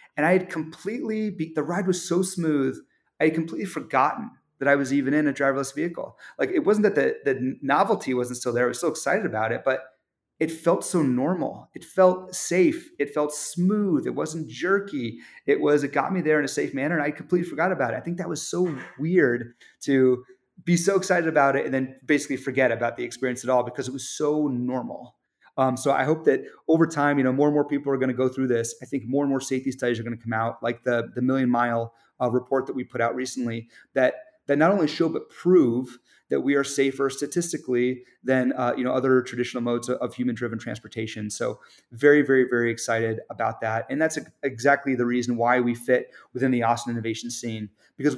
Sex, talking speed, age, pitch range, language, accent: male, 225 wpm, 30-49, 125-160 Hz, English, American